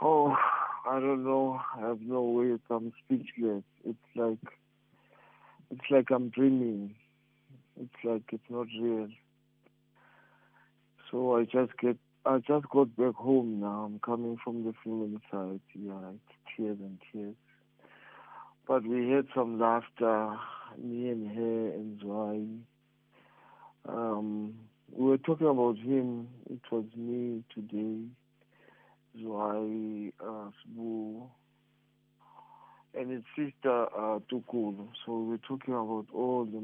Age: 50-69